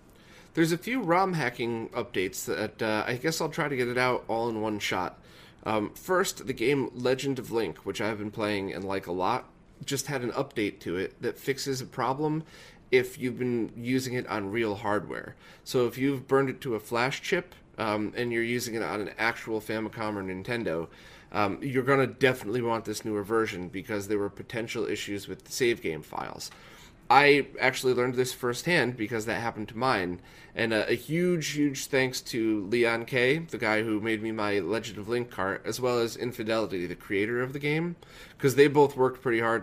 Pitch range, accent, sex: 100-125 Hz, American, male